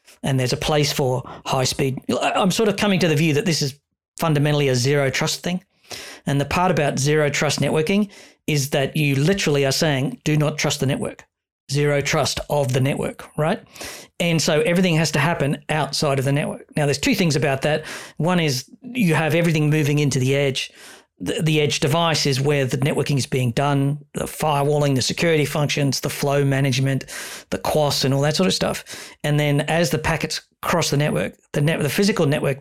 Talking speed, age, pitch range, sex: 200 wpm, 40-59, 140-165 Hz, male